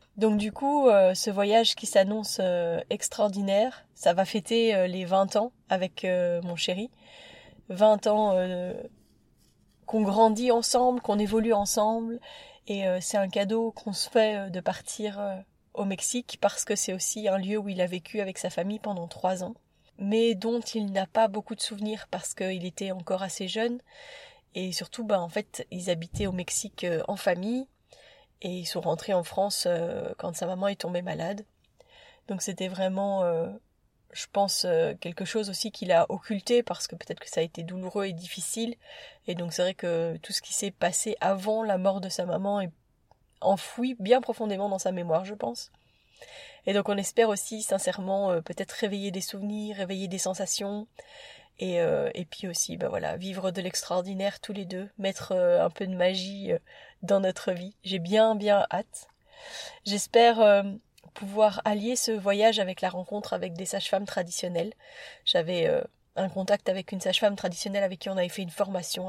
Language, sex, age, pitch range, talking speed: French, female, 20-39, 185-220 Hz, 175 wpm